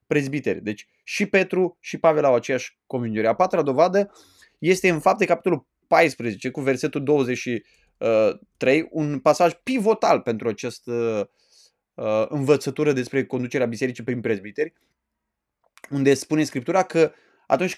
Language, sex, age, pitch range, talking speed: Romanian, male, 20-39, 145-190 Hz, 125 wpm